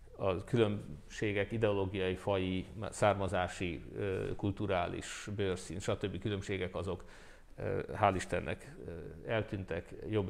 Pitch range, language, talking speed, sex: 95-110 Hz, Hungarian, 80 wpm, male